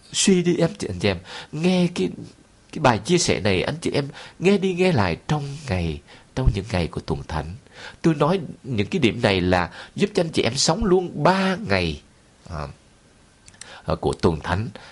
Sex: male